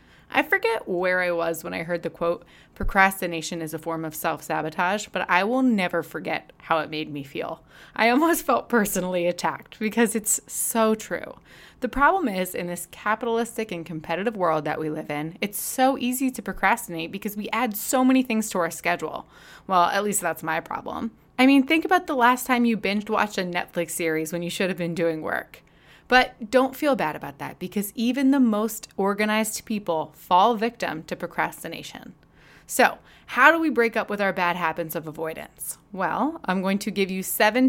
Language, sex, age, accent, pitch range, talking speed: English, female, 20-39, American, 165-230 Hz, 195 wpm